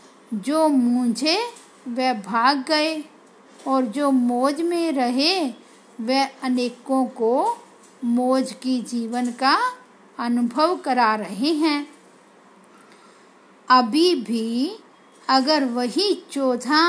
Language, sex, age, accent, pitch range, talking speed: Hindi, female, 50-69, native, 245-300 Hz, 90 wpm